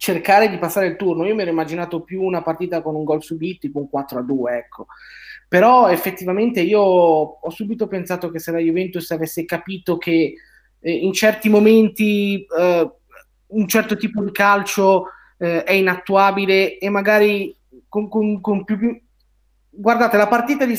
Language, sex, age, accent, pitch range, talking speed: Italian, male, 30-49, native, 165-200 Hz, 170 wpm